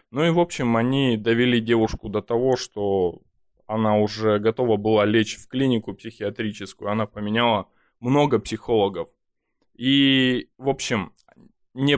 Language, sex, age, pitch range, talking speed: Russian, male, 20-39, 105-130 Hz, 130 wpm